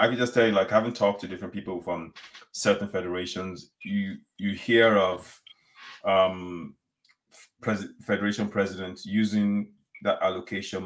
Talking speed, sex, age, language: 140 wpm, male, 30-49, English